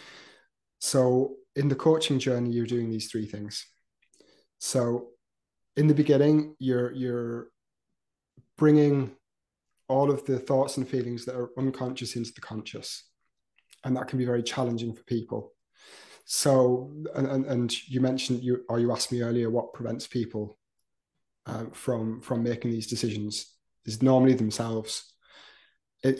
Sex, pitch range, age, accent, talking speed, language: male, 115-130 Hz, 20-39, British, 140 wpm, English